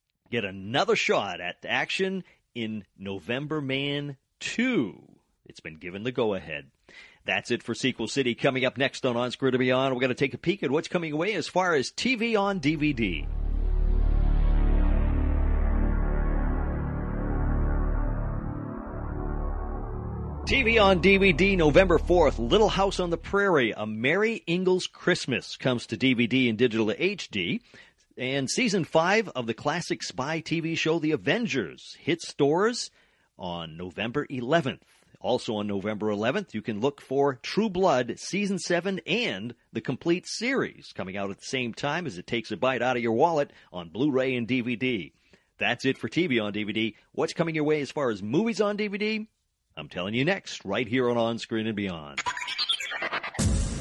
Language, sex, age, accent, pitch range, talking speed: English, male, 40-59, American, 100-160 Hz, 160 wpm